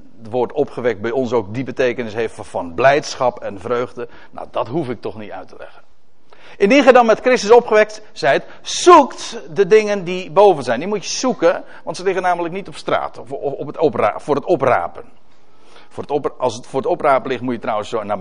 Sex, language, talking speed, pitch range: male, Dutch, 225 wpm, 135-220 Hz